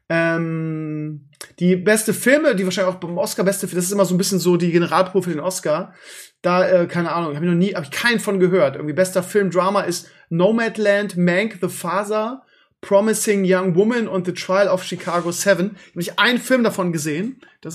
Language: German